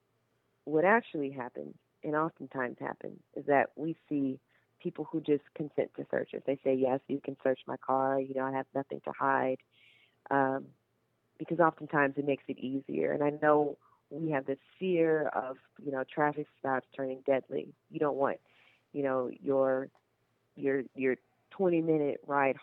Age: 30-49